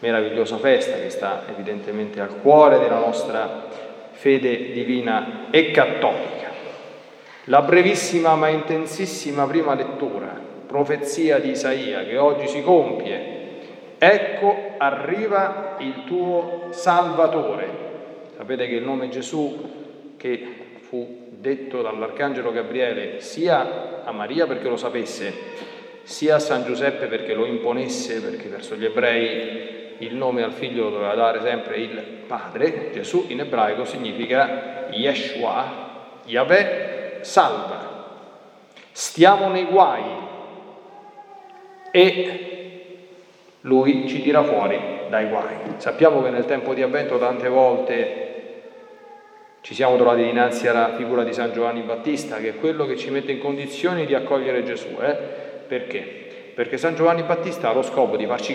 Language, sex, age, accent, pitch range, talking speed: Italian, male, 40-59, native, 130-205 Hz, 125 wpm